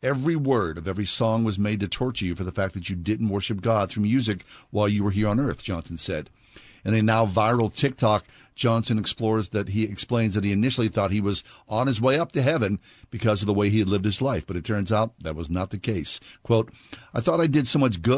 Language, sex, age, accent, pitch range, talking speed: English, male, 50-69, American, 100-120 Hz, 250 wpm